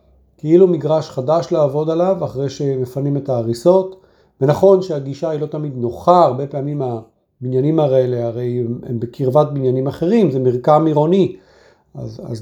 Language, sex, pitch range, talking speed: Hebrew, male, 125-180 Hz, 145 wpm